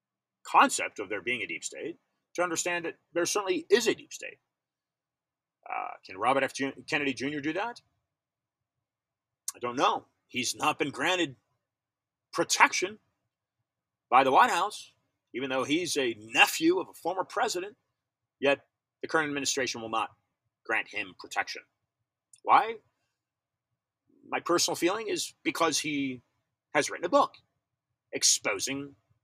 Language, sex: English, male